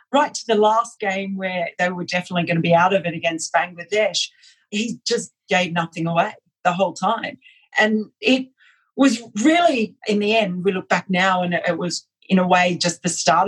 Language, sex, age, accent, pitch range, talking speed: English, female, 40-59, Australian, 175-225 Hz, 200 wpm